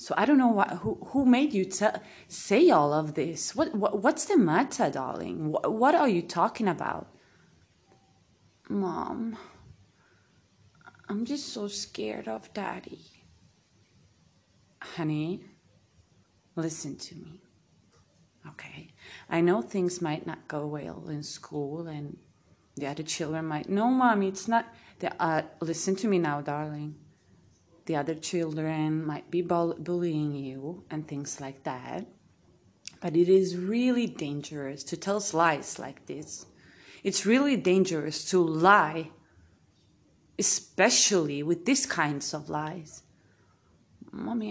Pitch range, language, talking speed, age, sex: 150-195 Hz, English, 130 wpm, 30-49, female